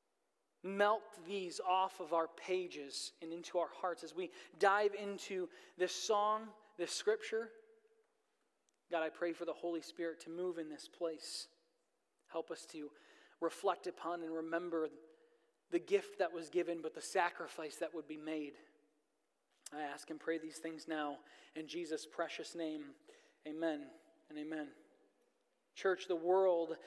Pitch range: 165-255 Hz